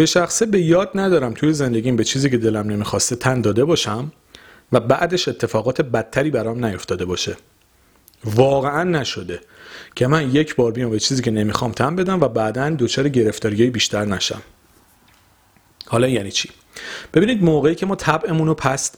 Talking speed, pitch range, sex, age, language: 160 wpm, 110-140 Hz, male, 40-59, Persian